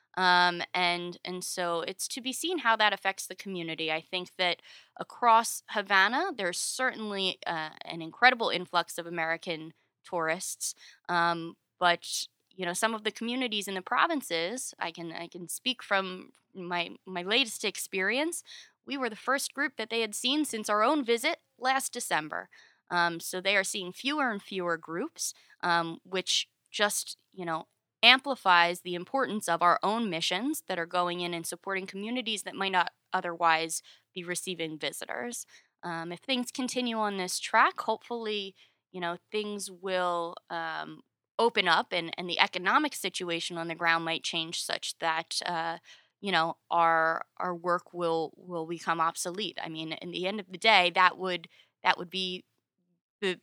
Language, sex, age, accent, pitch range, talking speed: English, female, 20-39, American, 170-215 Hz, 165 wpm